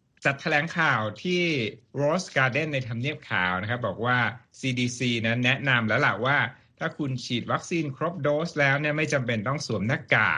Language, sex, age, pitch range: Thai, male, 60-79, 115-150 Hz